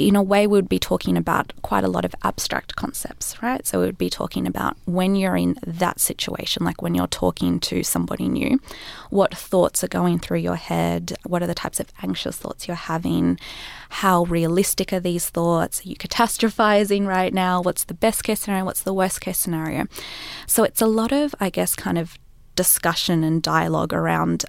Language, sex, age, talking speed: English, female, 20-39, 195 wpm